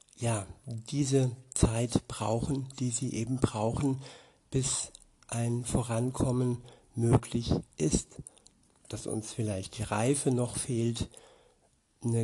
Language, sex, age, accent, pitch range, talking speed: German, male, 60-79, German, 110-130 Hz, 105 wpm